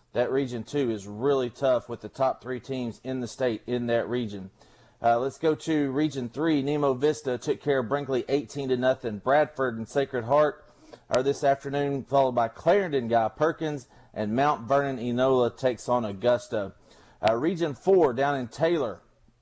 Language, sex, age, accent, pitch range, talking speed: English, male, 40-59, American, 120-145 Hz, 175 wpm